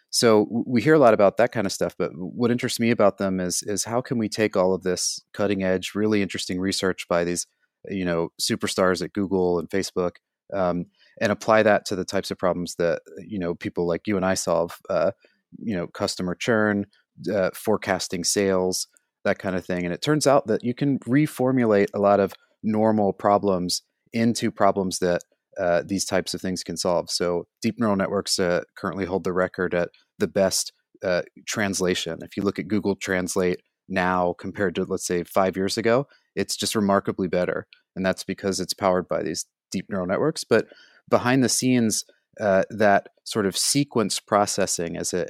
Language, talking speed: English, 195 wpm